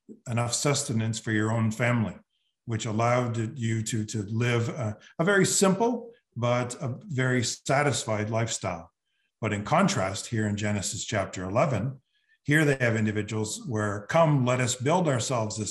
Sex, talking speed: male, 155 wpm